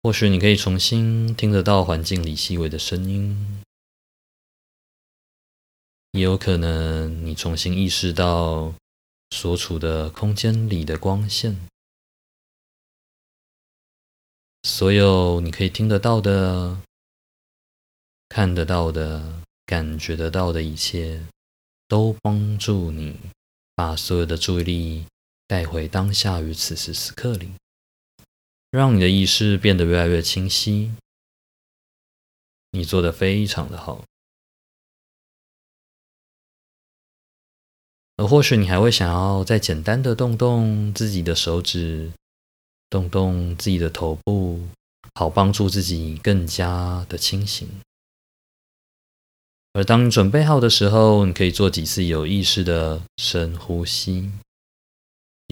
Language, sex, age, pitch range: Chinese, male, 20-39, 80-100 Hz